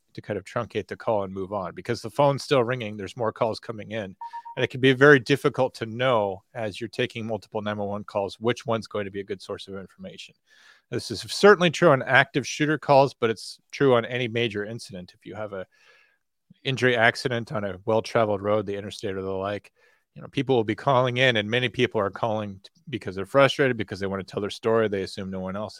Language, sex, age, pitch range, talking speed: English, male, 30-49, 100-125 Hz, 235 wpm